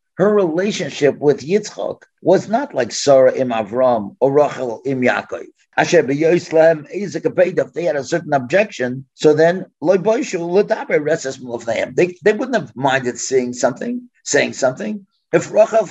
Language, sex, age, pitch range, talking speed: English, male, 50-69, 135-185 Hz, 135 wpm